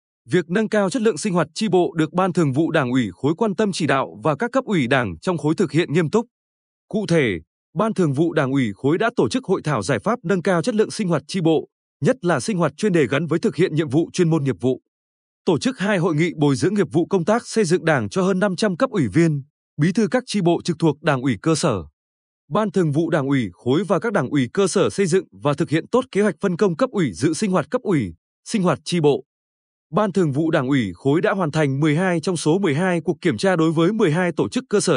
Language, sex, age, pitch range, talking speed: Vietnamese, male, 20-39, 145-200 Hz, 270 wpm